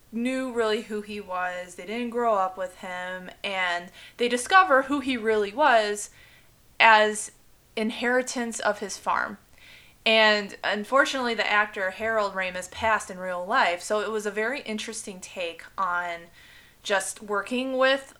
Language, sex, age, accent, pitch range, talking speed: English, female, 20-39, American, 195-245 Hz, 145 wpm